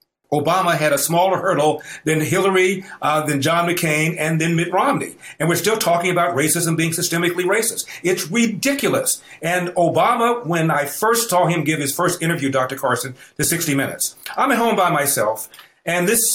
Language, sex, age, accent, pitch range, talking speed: English, male, 50-69, American, 145-180 Hz, 180 wpm